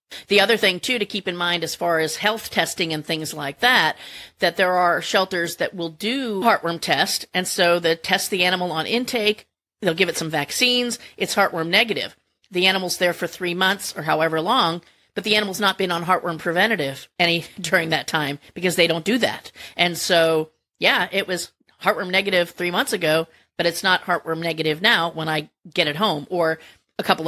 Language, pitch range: English, 165-200 Hz